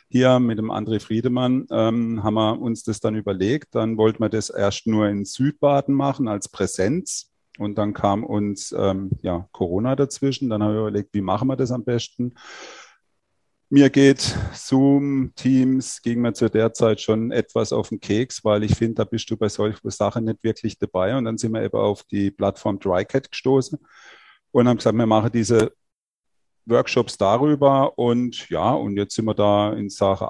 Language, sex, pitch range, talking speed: German, male, 100-120 Hz, 185 wpm